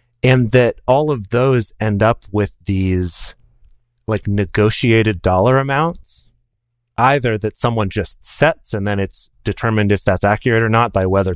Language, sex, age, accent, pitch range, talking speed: English, male, 30-49, American, 95-115 Hz, 155 wpm